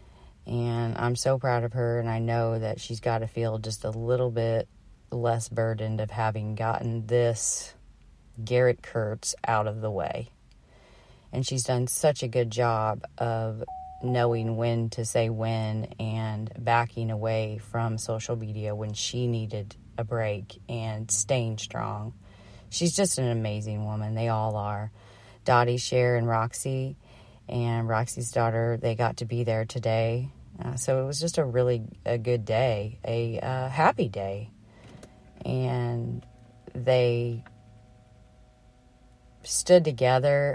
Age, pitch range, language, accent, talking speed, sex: 40-59, 110-120 Hz, English, American, 140 wpm, female